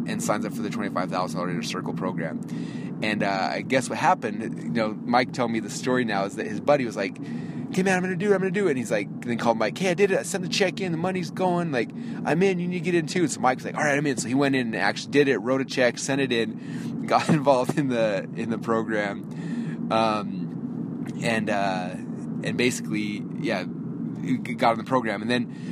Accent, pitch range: American, 115-175 Hz